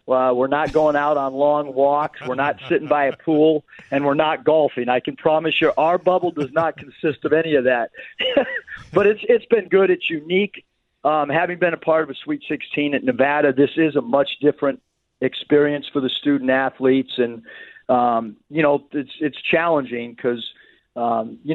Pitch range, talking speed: 125-145 Hz, 185 wpm